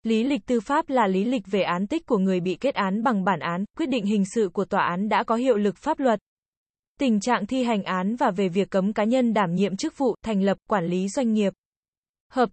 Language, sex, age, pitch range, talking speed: Vietnamese, female, 20-39, 200-255 Hz, 255 wpm